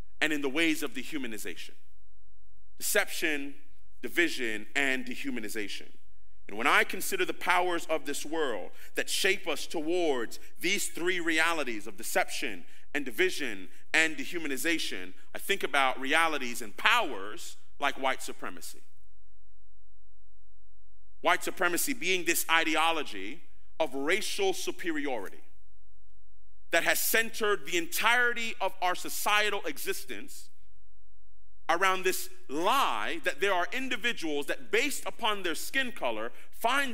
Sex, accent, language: male, American, English